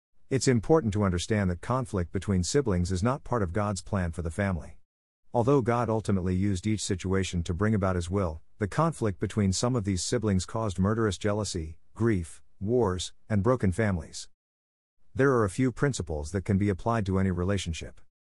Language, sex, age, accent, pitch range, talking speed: English, male, 50-69, American, 90-115 Hz, 180 wpm